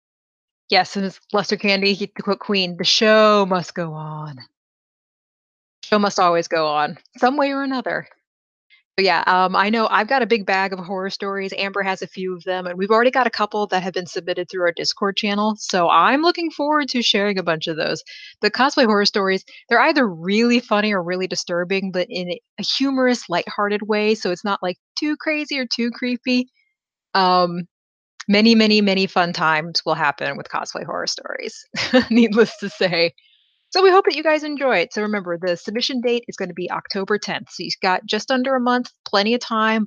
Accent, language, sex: American, English, female